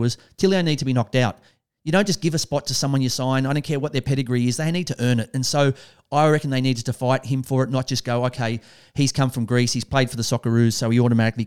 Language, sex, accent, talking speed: English, male, Australian, 295 wpm